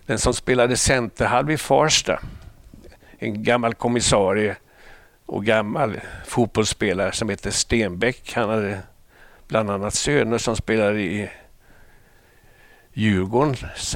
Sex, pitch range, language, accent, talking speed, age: male, 110-135 Hz, Swedish, native, 105 wpm, 60-79